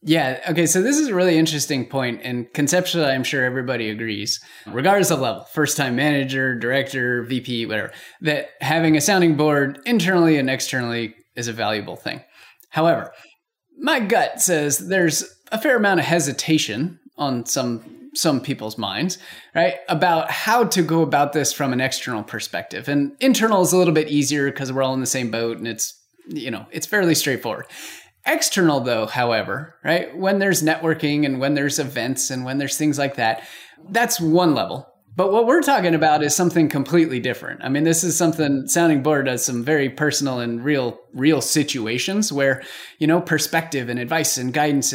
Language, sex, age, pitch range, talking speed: English, male, 20-39, 125-165 Hz, 180 wpm